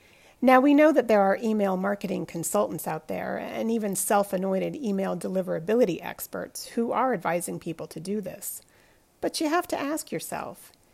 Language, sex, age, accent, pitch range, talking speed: English, female, 40-59, American, 190-245 Hz, 165 wpm